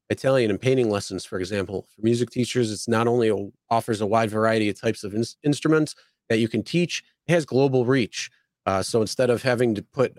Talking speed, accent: 205 wpm, American